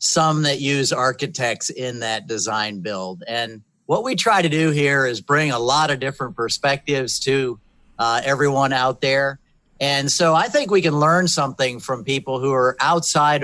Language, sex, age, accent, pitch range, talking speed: English, male, 50-69, American, 125-155 Hz, 180 wpm